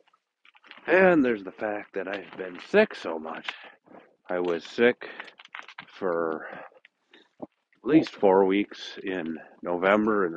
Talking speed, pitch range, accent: 120 wpm, 95-130 Hz, American